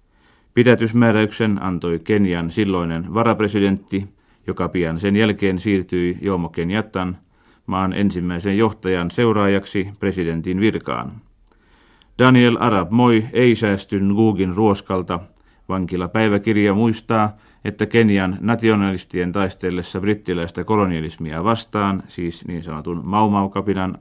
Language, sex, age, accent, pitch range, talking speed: Finnish, male, 30-49, native, 90-110 Hz, 90 wpm